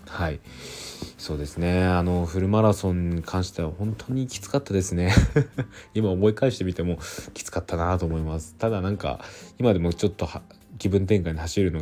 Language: Japanese